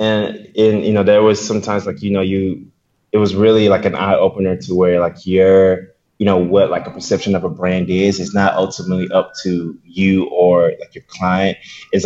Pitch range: 90-105 Hz